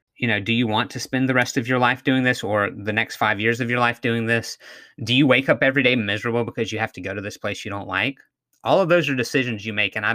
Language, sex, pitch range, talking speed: English, male, 110-140 Hz, 300 wpm